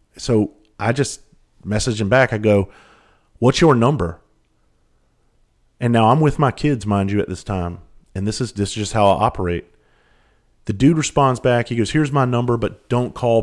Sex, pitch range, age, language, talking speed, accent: male, 95-125 Hz, 30-49, English, 190 wpm, American